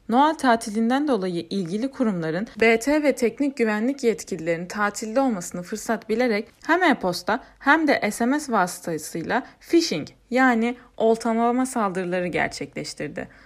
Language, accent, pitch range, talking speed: Turkish, native, 180-250 Hz, 110 wpm